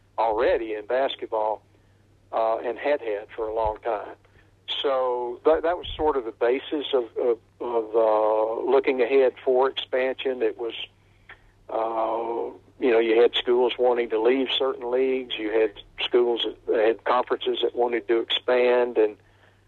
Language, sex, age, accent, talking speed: English, male, 60-79, American, 155 wpm